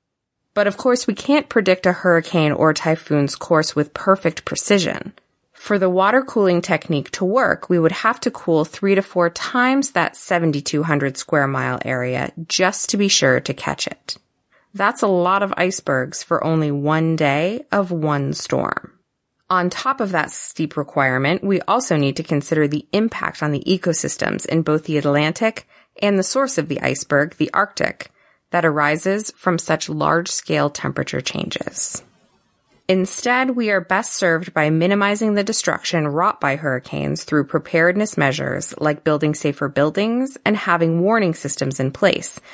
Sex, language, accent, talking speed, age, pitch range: female, English, American, 160 wpm, 30-49, 150-200 Hz